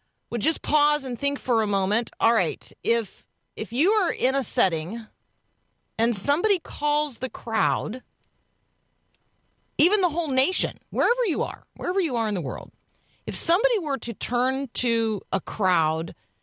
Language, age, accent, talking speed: English, 40-59, American, 160 wpm